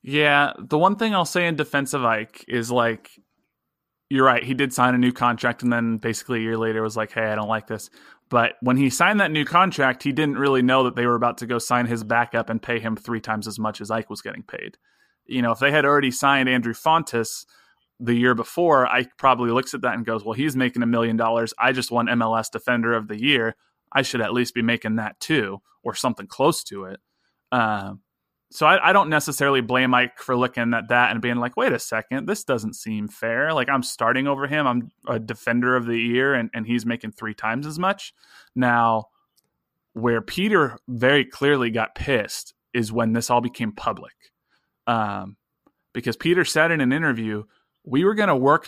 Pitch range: 115-140 Hz